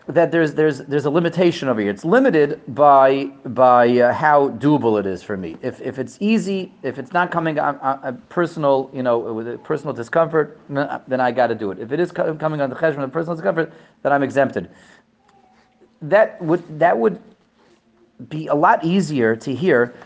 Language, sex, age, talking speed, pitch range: English, male, 30-49, 205 wpm, 130-175 Hz